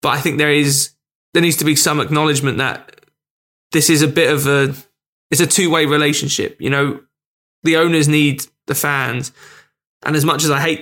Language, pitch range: English, 140-155 Hz